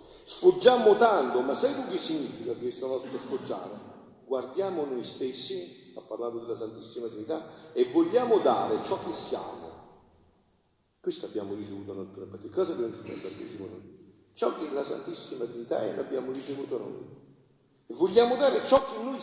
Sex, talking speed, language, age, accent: male, 150 wpm, Italian, 40-59, native